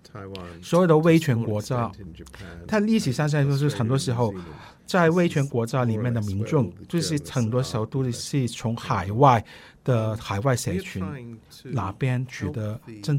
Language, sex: Chinese, male